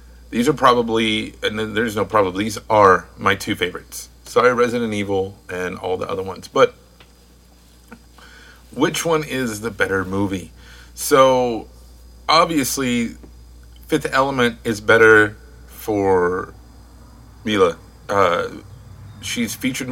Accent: American